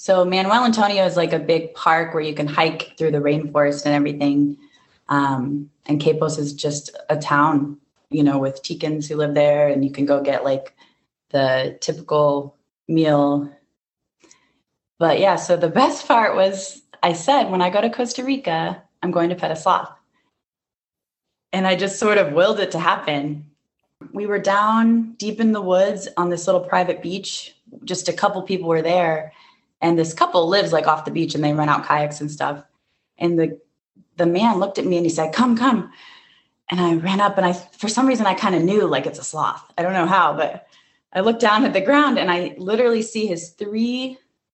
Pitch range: 150-200 Hz